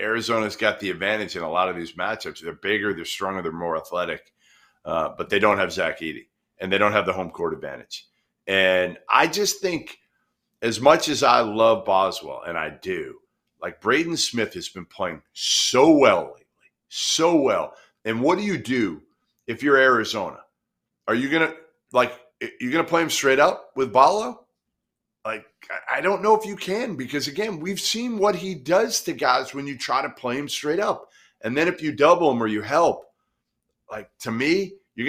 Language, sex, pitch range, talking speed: English, male, 110-165 Hz, 195 wpm